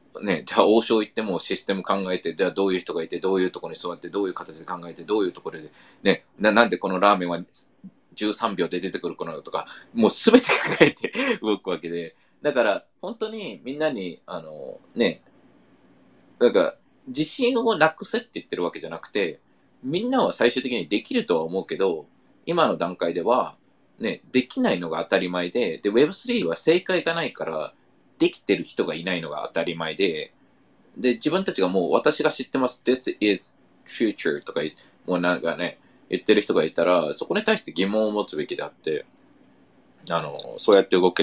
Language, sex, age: Japanese, male, 20-39